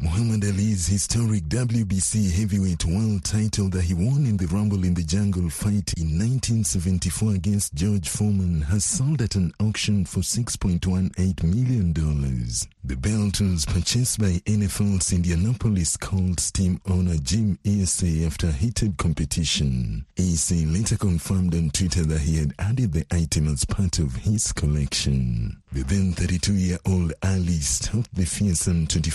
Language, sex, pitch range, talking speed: English, male, 80-100 Hz, 140 wpm